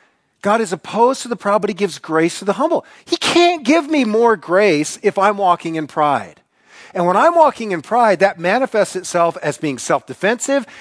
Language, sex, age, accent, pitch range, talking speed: English, male, 40-59, American, 150-220 Hz, 200 wpm